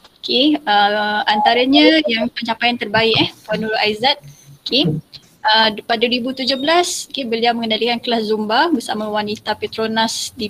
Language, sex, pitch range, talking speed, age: Malay, female, 210-235 Hz, 130 wpm, 20-39